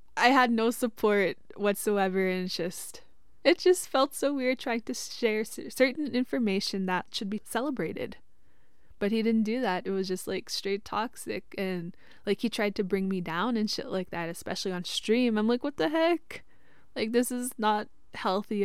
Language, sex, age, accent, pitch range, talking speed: English, female, 20-39, American, 185-225 Hz, 185 wpm